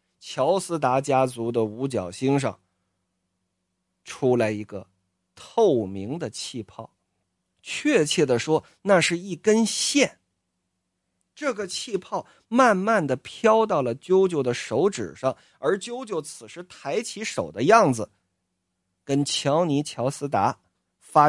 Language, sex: Chinese, male